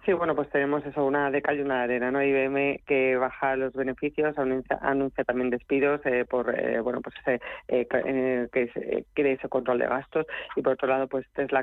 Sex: female